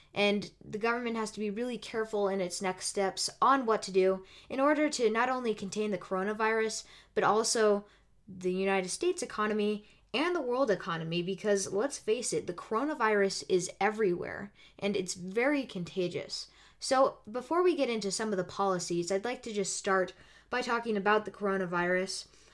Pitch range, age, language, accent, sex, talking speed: 190-225 Hz, 10-29, English, American, female, 175 wpm